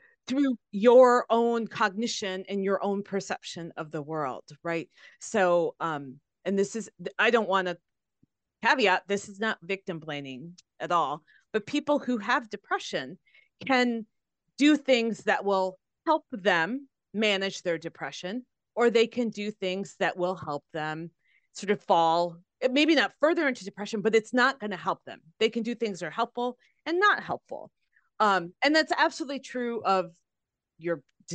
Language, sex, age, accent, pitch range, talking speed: English, female, 30-49, American, 175-240 Hz, 160 wpm